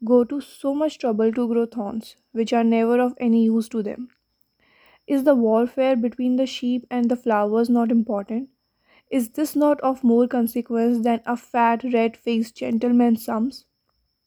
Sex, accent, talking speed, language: female, native, 170 wpm, Hindi